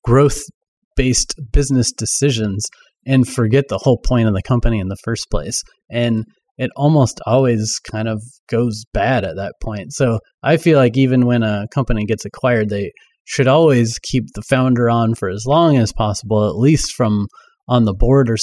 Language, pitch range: English, 110-130 Hz